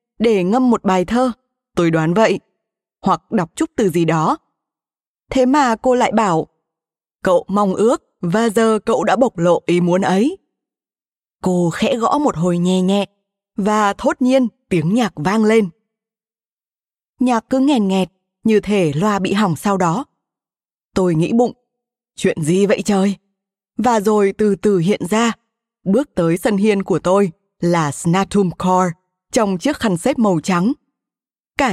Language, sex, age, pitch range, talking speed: Vietnamese, female, 20-39, 190-245 Hz, 160 wpm